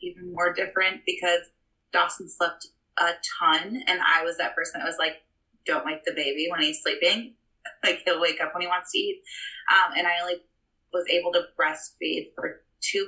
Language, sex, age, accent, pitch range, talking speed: English, female, 20-39, American, 175-260 Hz, 195 wpm